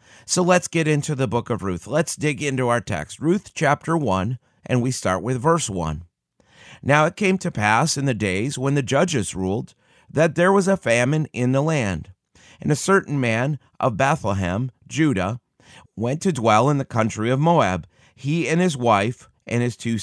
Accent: American